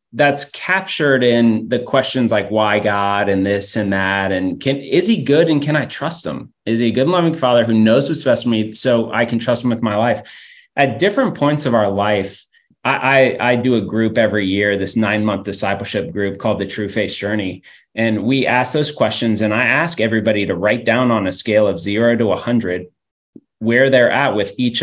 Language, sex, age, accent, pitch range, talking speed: English, male, 30-49, American, 105-140 Hz, 215 wpm